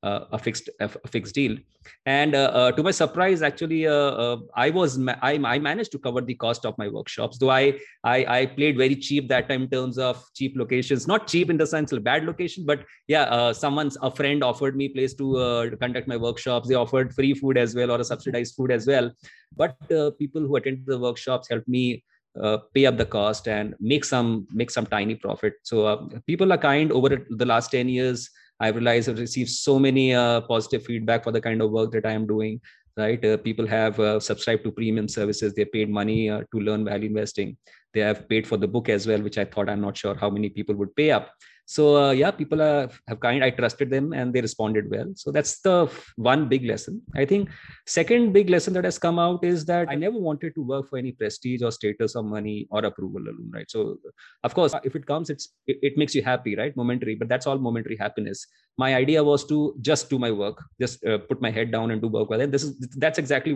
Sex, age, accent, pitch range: male, 20-39, Indian, 115-145 Hz